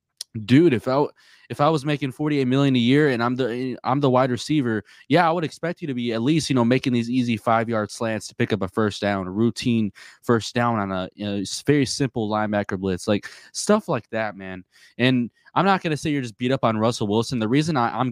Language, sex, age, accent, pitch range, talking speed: English, male, 20-39, American, 105-125 Hz, 250 wpm